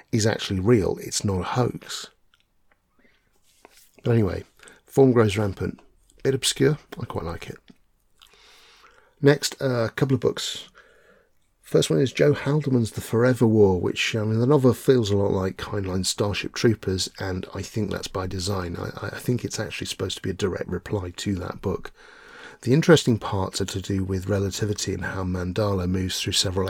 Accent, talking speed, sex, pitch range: British, 175 wpm, male, 95-125 Hz